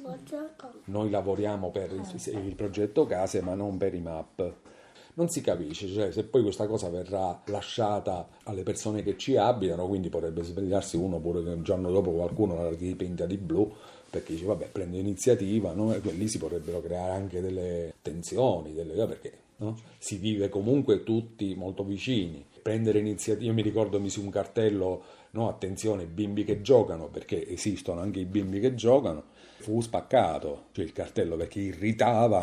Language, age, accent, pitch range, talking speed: Italian, 40-59, native, 90-110 Hz, 170 wpm